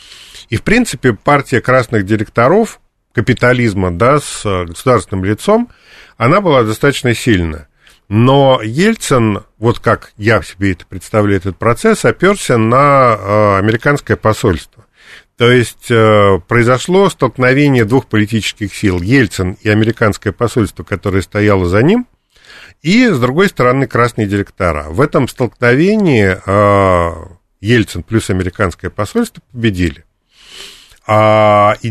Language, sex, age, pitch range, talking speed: Russian, male, 40-59, 100-135 Hz, 115 wpm